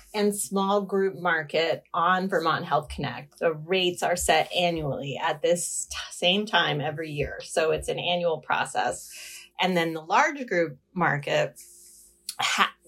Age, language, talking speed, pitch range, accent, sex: 30-49, English, 150 wpm, 155-200 Hz, American, female